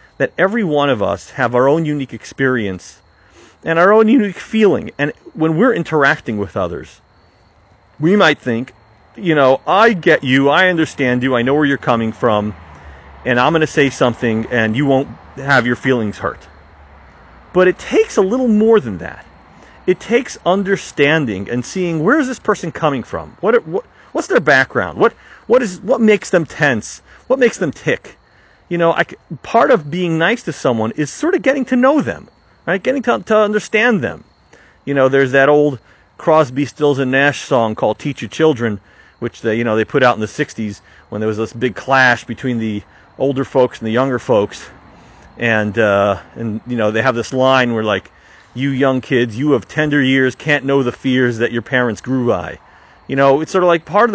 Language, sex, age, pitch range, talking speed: English, male, 40-59, 110-165 Hz, 200 wpm